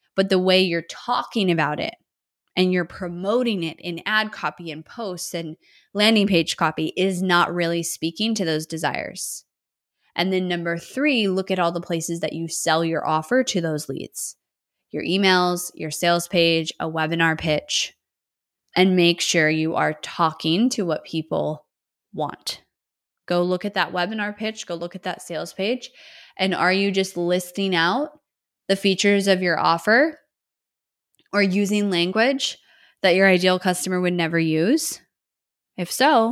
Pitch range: 170-215 Hz